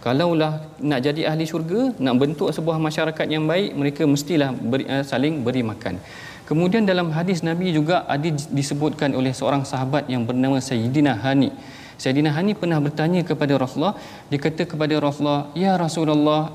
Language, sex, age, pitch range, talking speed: Malayalam, male, 40-59, 130-165 Hz, 160 wpm